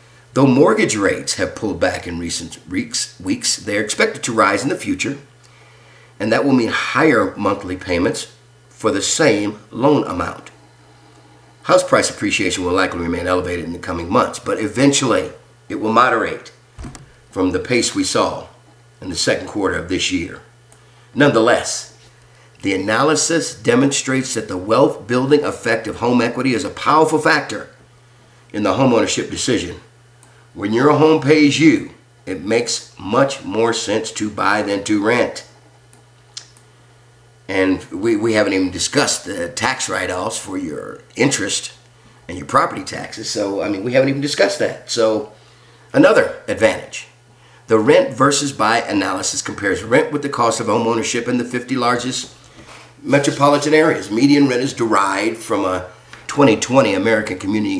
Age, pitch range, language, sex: 50-69, 95-130 Hz, English, male